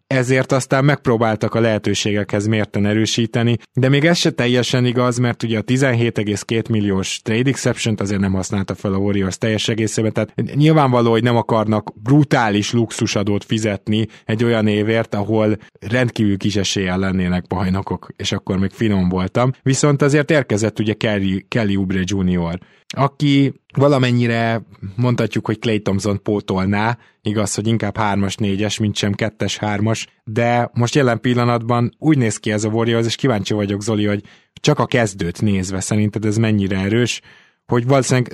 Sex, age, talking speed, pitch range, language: male, 20-39, 150 wpm, 100-125 Hz, Hungarian